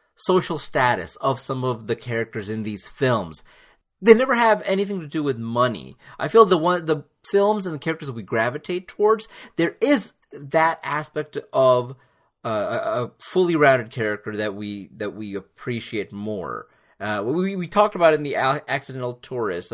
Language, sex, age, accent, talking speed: English, male, 30-49, American, 170 wpm